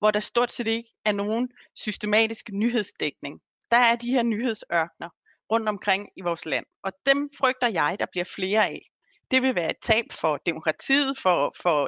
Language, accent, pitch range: Danish, native, 175-240 Hz